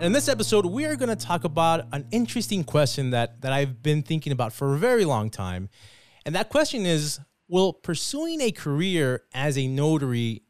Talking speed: 195 wpm